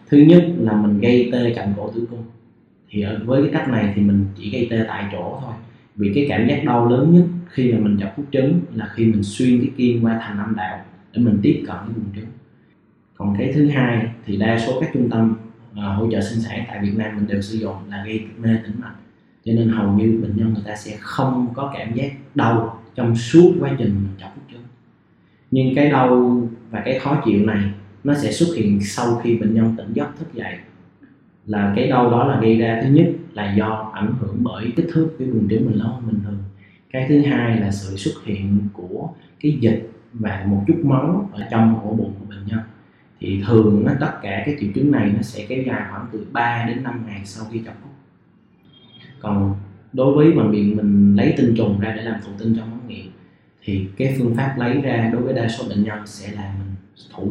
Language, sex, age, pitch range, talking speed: Vietnamese, male, 20-39, 105-125 Hz, 230 wpm